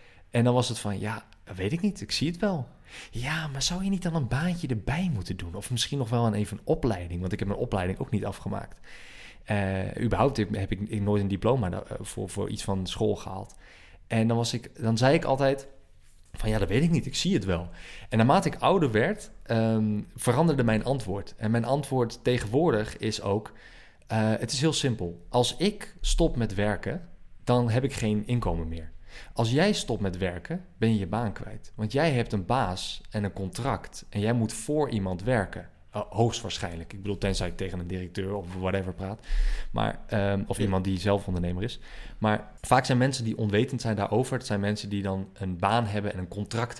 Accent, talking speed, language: Dutch, 210 wpm, English